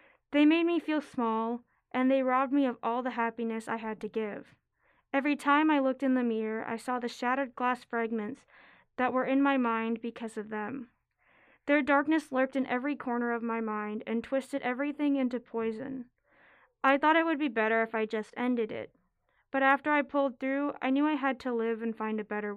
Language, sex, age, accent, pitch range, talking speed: English, female, 10-29, American, 230-275 Hz, 205 wpm